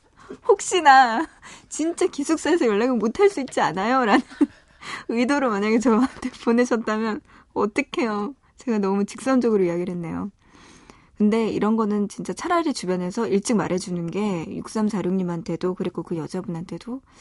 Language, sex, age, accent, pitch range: Korean, female, 20-39, native, 185-250 Hz